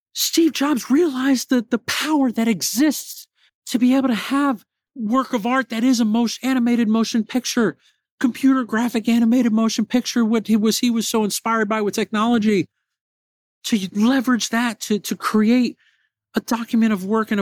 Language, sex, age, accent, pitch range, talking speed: English, male, 50-69, American, 160-230 Hz, 170 wpm